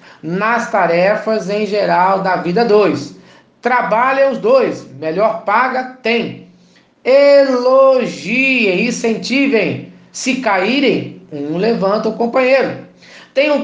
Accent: Brazilian